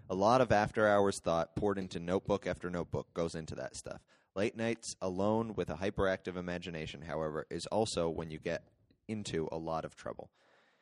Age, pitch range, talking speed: 30-49, 85-110 Hz, 175 wpm